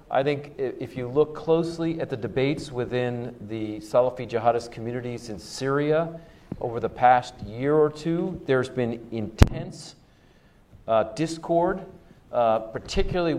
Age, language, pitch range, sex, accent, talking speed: 40-59, English, 110-135 Hz, male, American, 130 wpm